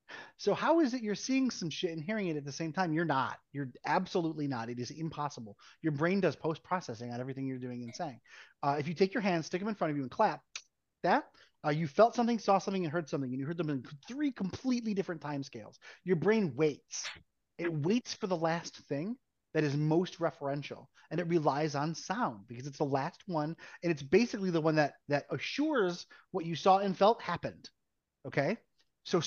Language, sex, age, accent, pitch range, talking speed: English, male, 30-49, American, 145-195 Hz, 215 wpm